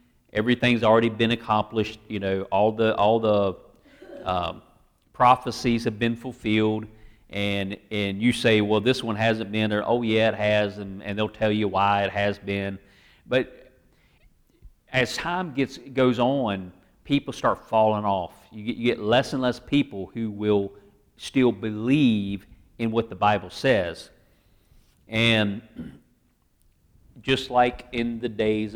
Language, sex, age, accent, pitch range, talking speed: English, male, 40-59, American, 100-120 Hz, 150 wpm